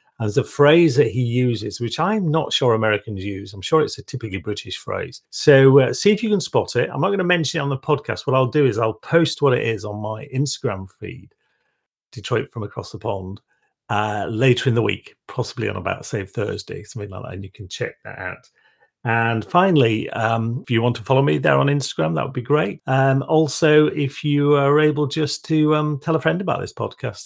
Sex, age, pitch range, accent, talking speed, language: male, 40-59, 110-145 Hz, British, 230 wpm, English